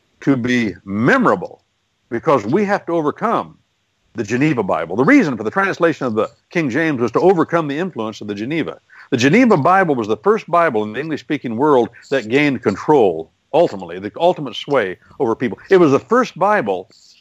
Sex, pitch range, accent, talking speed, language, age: male, 115-170 Hz, American, 185 wpm, English, 60-79